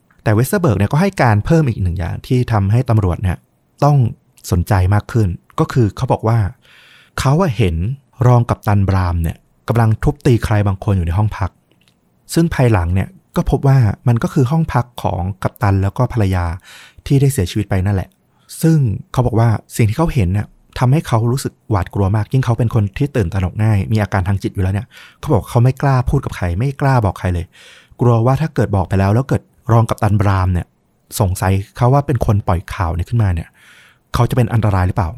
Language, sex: Thai, male